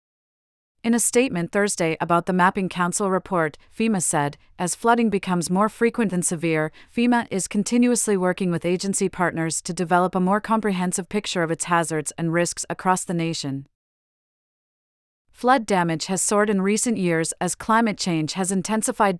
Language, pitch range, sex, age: English, 170-200 Hz, female, 40-59